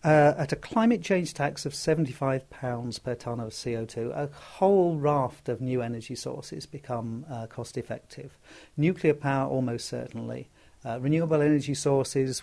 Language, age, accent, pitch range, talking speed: English, 50-69, British, 120-145 Hz, 145 wpm